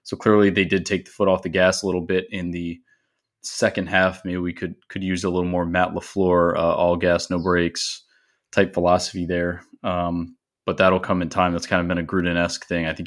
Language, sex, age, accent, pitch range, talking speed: English, male, 20-39, American, 90-110 Hz, 230 wpm